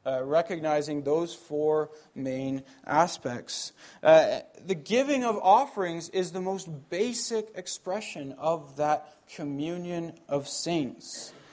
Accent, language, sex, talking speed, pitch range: American, English, male, 110 wpm, 140-170 Hz